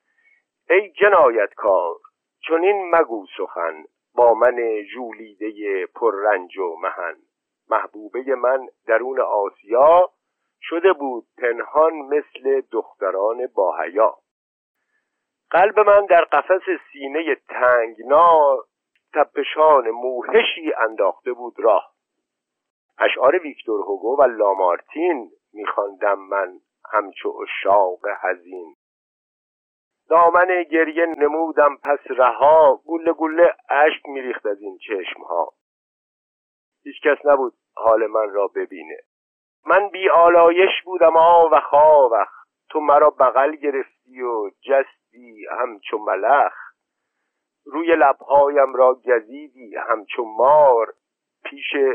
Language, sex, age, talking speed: Persian, male, 50-69, 100 wpm